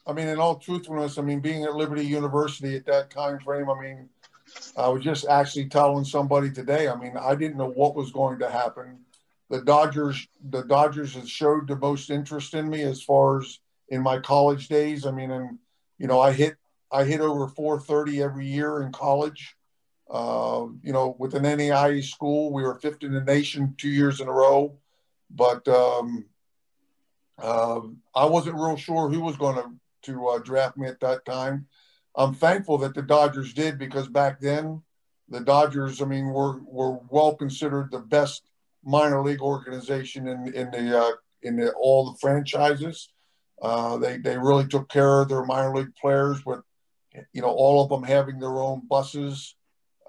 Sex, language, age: male, English, 50-69